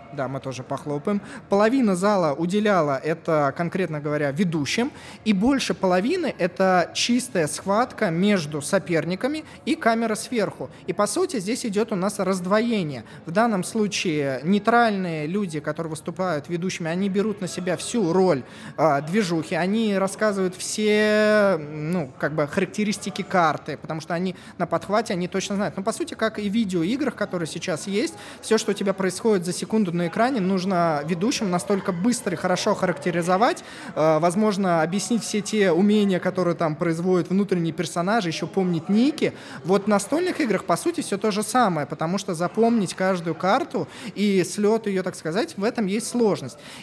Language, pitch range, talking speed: Russian, 165-210 Hz, 160 wpm